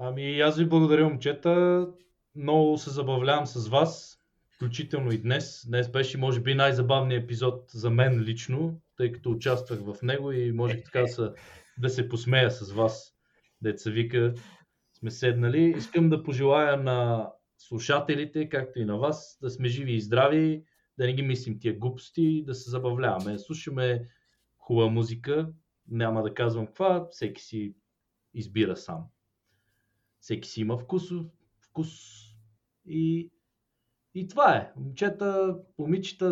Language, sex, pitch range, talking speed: Bulgarian, male, 120-155 Hz, 140 wpm